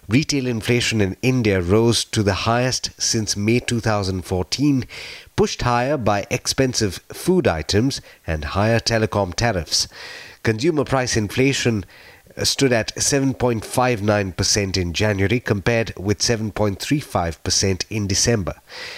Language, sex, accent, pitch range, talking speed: English, male, Indian, 95-125 Hz, 110 wpm